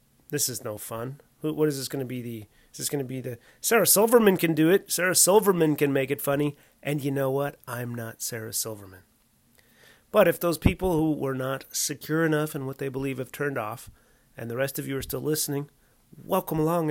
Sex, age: male, 30-49